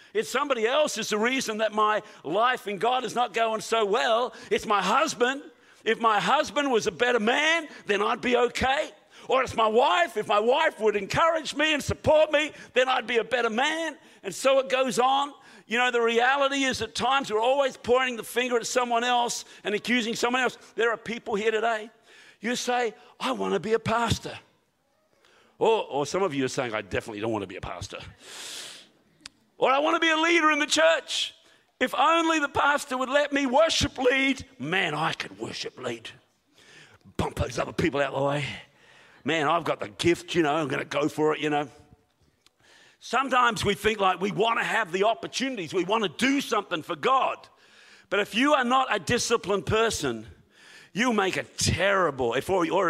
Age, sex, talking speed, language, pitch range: 50-69, male, 200 wpm, English, 215-275 Hz